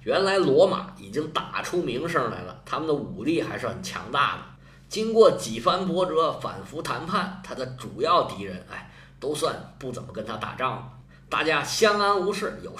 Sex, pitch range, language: male, 110-170 Hz, Chinese